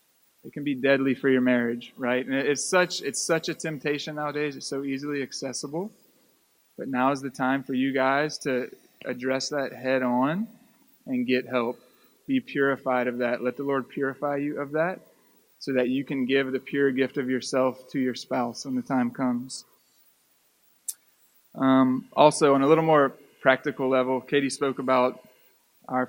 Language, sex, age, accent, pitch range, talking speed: English, male, 20-39, American, 130-145 Hz, 175 wpm